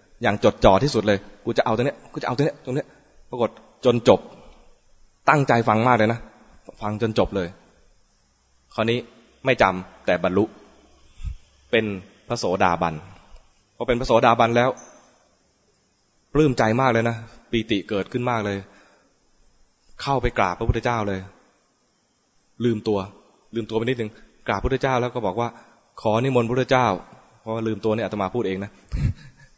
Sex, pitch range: male, 100-120 Hz